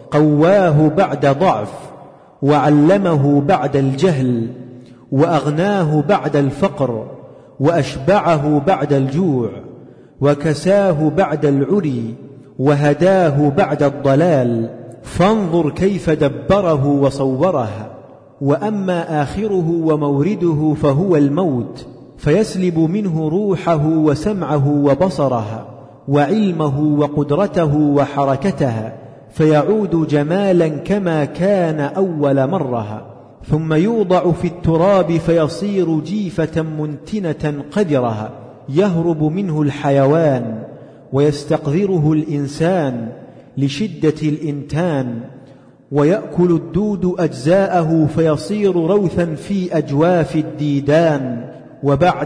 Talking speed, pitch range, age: 75 wpm, 140-175 Hz, 40-59